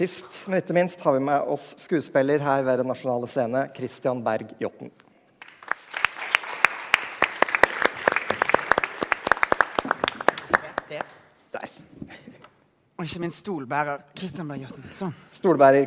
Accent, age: Norwegian, 30-49